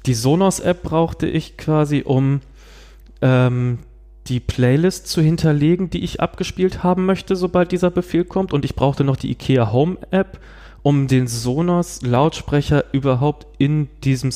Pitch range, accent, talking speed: 125-155 Hz, German, 135 wpm